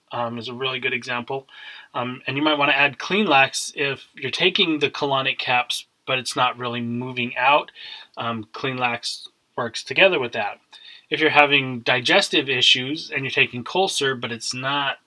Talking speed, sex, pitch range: 175 wpm, male, 120-145 Hz